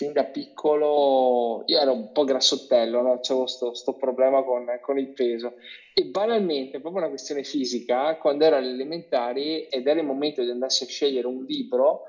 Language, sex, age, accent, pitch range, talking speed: Italian, male, 20-39, native, 130-170 Hz, 180 wpm